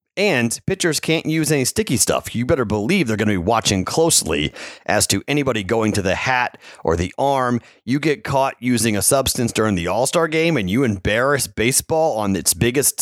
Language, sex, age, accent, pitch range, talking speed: English, male, 30-49, American, 105-130 Hz, 200 wpm